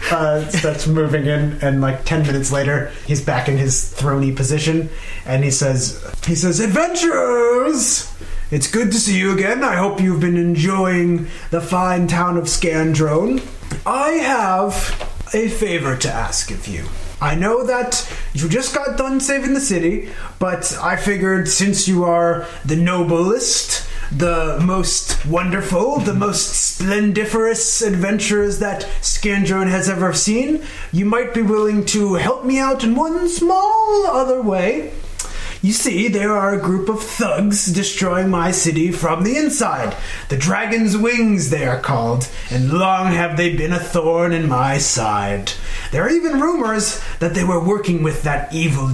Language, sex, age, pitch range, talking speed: English, male, 30-49, 145-205 Hz, 160 wpm